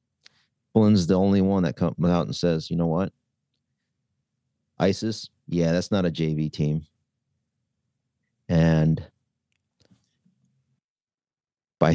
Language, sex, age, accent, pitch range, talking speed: English, male, 40-59, American, 80-100 Hz, 105 wpm